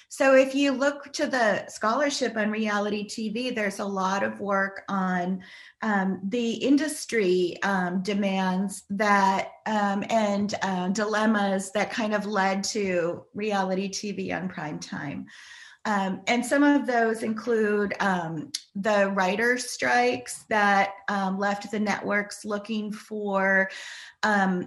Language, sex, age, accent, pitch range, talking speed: English, female, 30-49, American, 195-235 Hz, 130 wpm